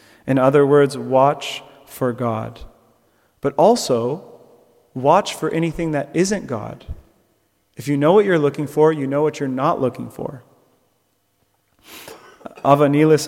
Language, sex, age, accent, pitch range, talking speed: English, male, 30-49, American, 125-145 Hz, 130 wpm